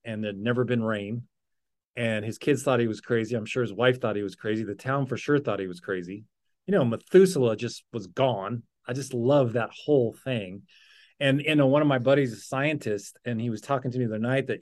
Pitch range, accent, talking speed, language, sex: 120-150 Hz, American, 240 wpm, English, male